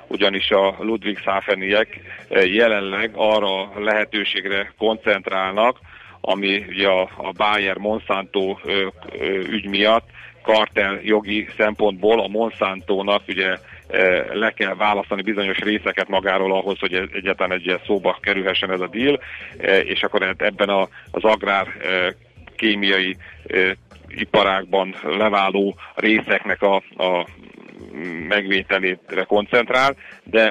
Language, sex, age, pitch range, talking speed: Hungarian, male, 40-59, 95-105 Hz, 105 wpm